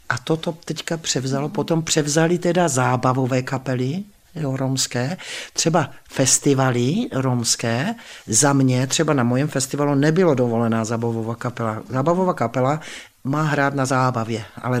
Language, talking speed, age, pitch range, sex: Czech, 125 wpm, 60-79, 130-160 Hz, male